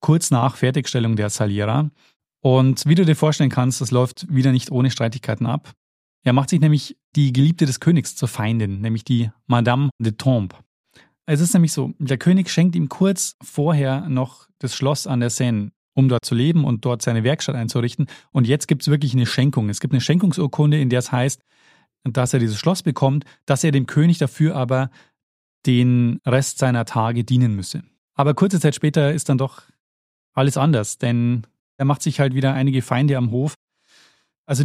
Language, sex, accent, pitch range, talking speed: German, male, German, 125-150 Hz, 190 wpm